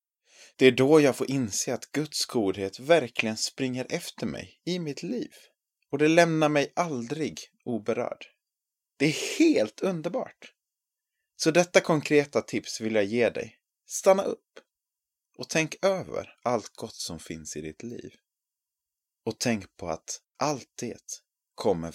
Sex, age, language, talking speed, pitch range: male, 30-49, Swedish, 145 wpm, 100-145 Hz